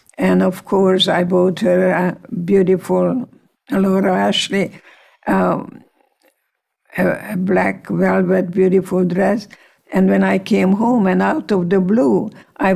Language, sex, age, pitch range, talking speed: English, female, 60-79, 185-205 Hz, 130 wpm